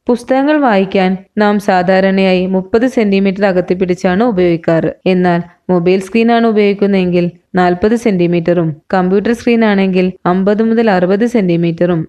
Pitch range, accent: 175-210 Hz, native